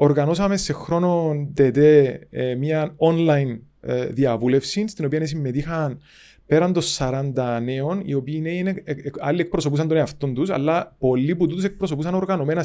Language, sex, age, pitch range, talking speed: Greek, male, 30-49, 135-170 Hz, 140 wpm